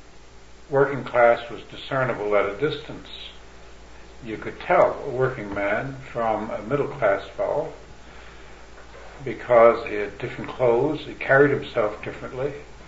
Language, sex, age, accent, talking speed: English, male, 60-79, American, 125 wpm